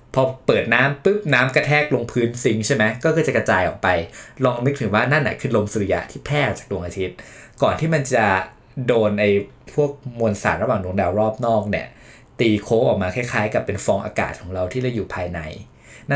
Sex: male